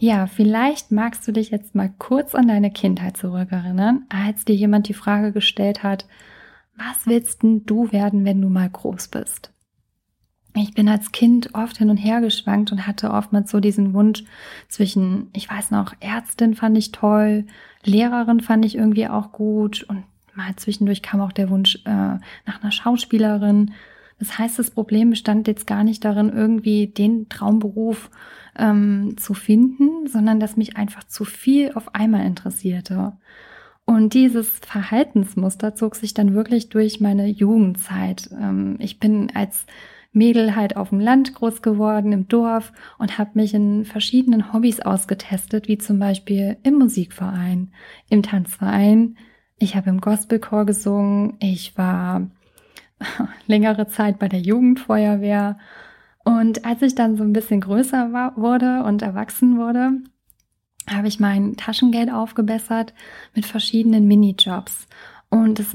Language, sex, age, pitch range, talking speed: German, female, 30-49, 200-225 Hz, 150 wpm